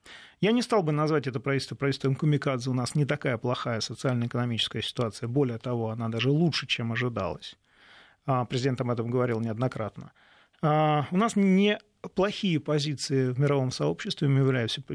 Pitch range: 130-165 Hz